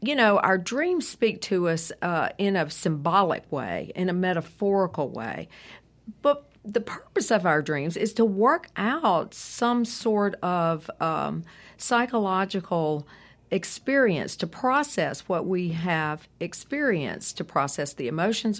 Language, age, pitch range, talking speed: English, 50-69, 175-230 Hz, 135 wpm